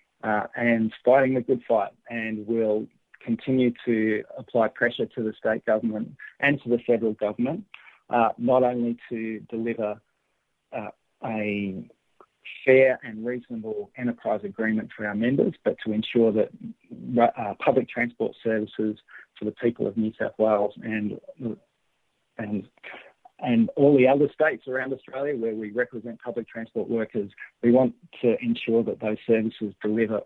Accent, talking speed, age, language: Australian, 145 wpm, 40-59, English